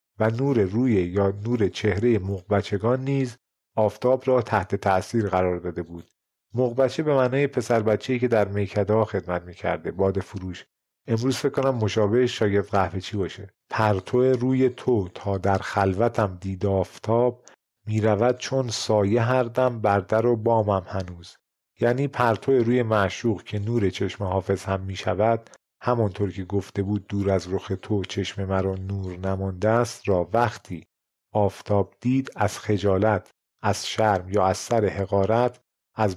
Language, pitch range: Persian, 95-120 Hz